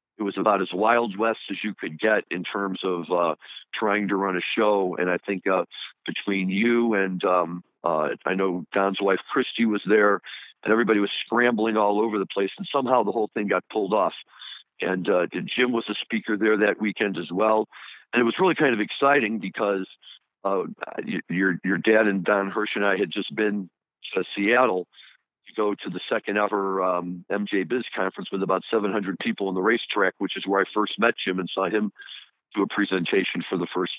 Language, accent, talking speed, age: English, American, 205 wpm, 50-69